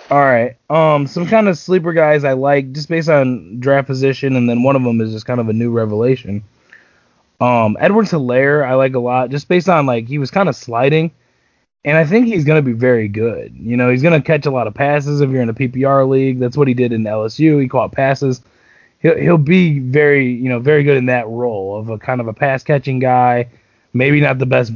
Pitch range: 125-155 Hz